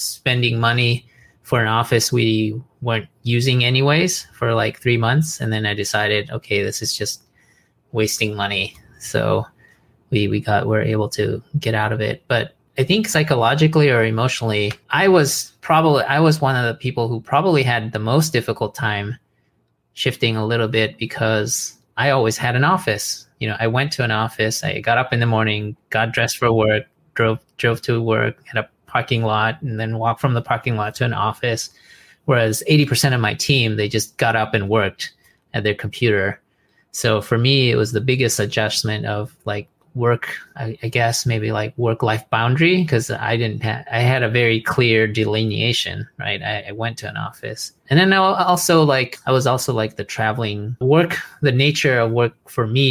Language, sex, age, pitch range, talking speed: English, male, 20-39, 110-135 Hz, 190 wpm